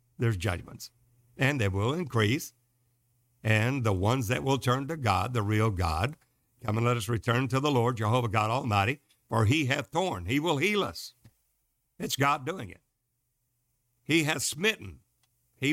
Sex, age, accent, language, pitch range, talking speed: male, 60-79, American, English, 115-140 Hz, 170 wpm